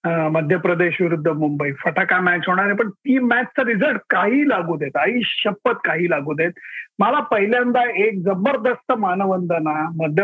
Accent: native